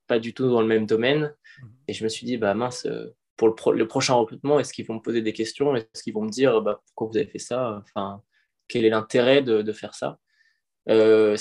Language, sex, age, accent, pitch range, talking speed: French, male, 20-39, French, 105-125 Hz, 245 wpm